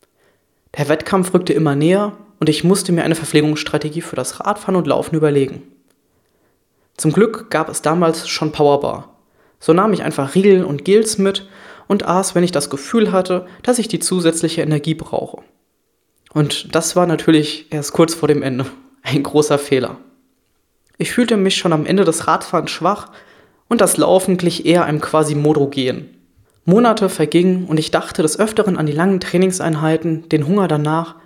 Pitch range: 150-190 Hz